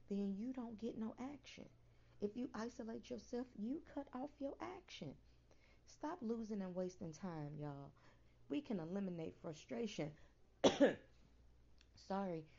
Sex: female